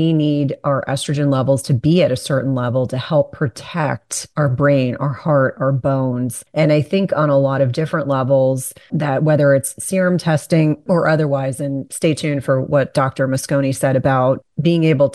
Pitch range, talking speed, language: 135-155 Hz, 185 wpm, English